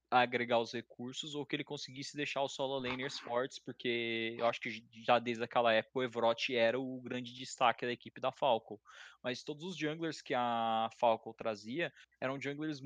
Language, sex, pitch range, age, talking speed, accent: Portuguese, male, 120-150 Hz, 20-39, 185 wpm, Brazilian